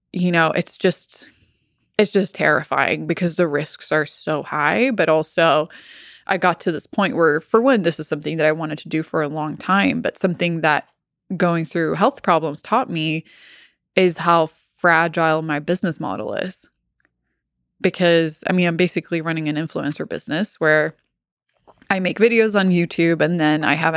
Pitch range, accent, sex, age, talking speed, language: 155-190 Hz, American, female, 20-39, 175 wpm, English